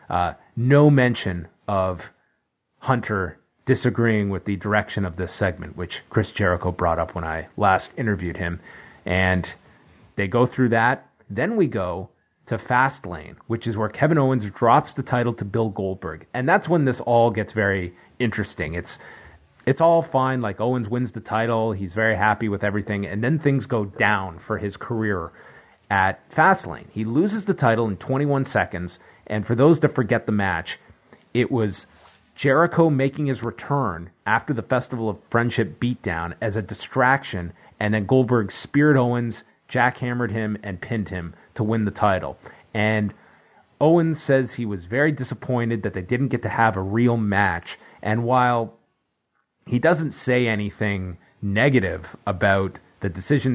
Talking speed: 160 wpm